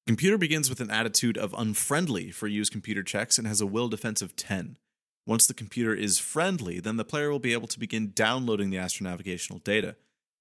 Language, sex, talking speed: English, male, 210 wpm